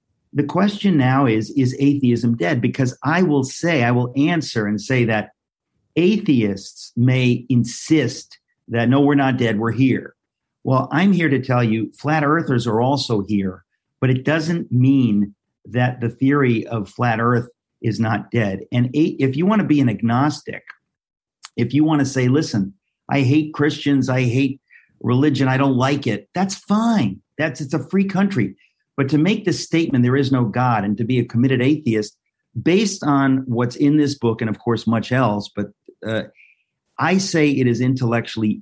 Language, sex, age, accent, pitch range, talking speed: English, male, 50-69, American, 115-145 Hz, 180 wpm